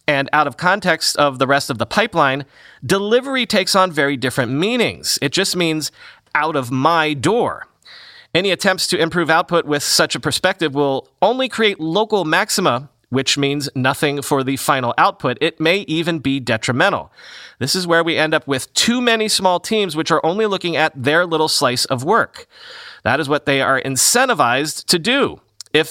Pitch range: 130-180 Hz